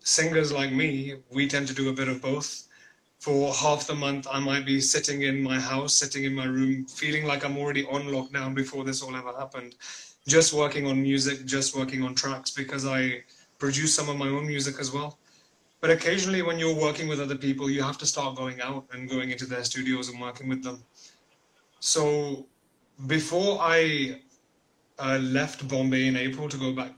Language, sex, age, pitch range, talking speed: Hindi, male, 30-49, 130-145 Hz, 200 wpm